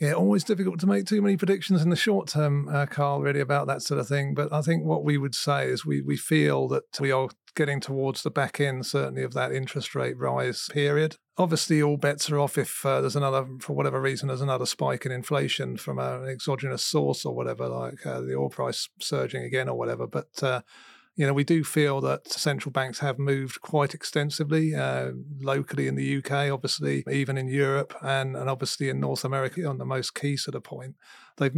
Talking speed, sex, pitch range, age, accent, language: 220 wpm, male, 130-150 Hz, 30-49, British, English